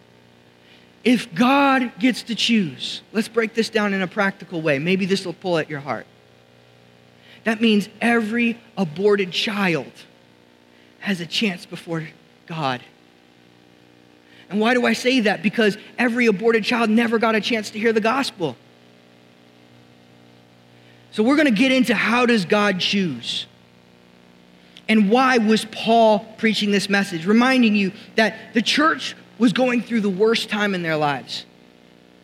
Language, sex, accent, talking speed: English, male, American, 145 wpm